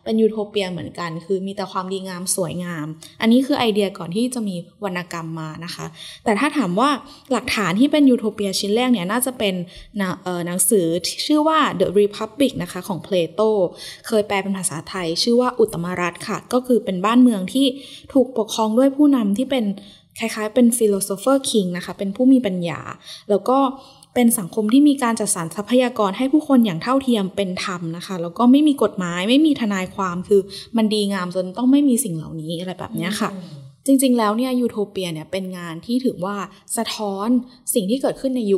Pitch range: 180-245 Hz